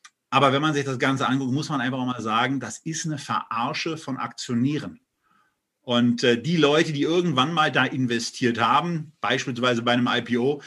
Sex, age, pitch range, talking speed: male, 40-59, 125-155 Hz, 180 wpm